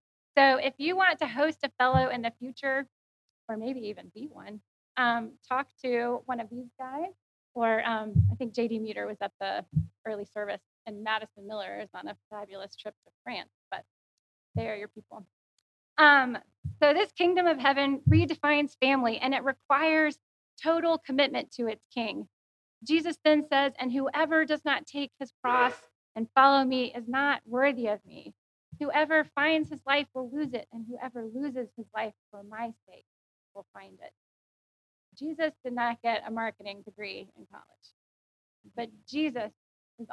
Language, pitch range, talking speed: English, 220-280 Hz, 170 wpm